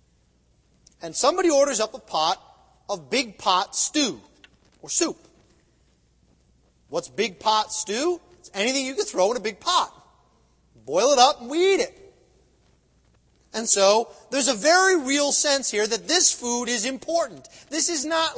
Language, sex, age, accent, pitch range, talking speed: English, male, 30-49, American, 210-295 Hz, 155 wpm